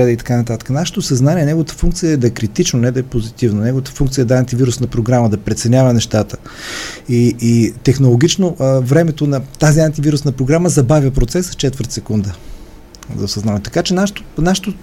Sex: male